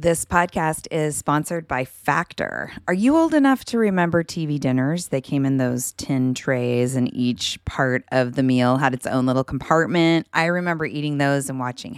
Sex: female